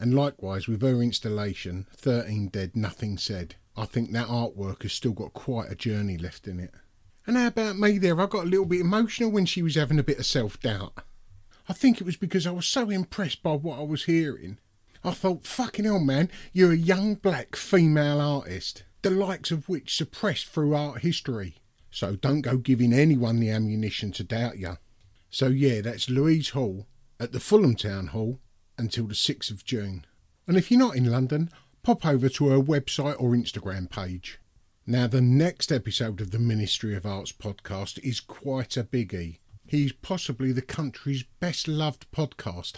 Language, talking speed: English, 190 wpm